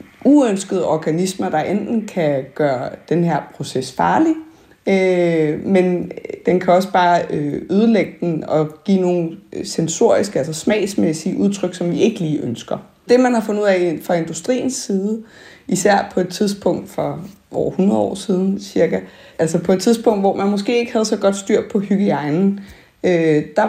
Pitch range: 165-210 Hz